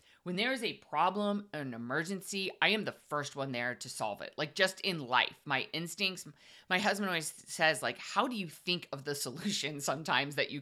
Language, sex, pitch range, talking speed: English, female, 145-205 Hz, 210 wpm